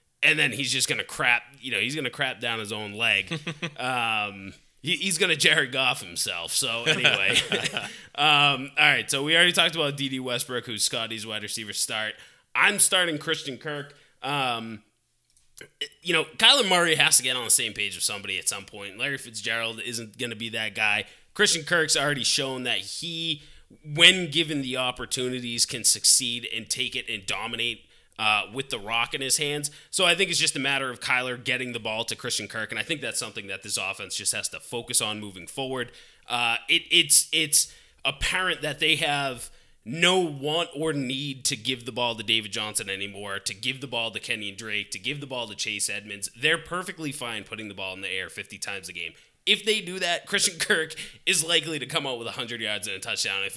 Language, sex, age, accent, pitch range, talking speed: English, male, 20-39, American, 110-150 Hz, 210 wpm